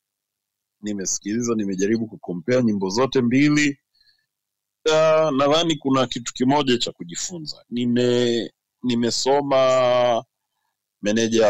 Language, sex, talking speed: Swahili, male, 85 wpm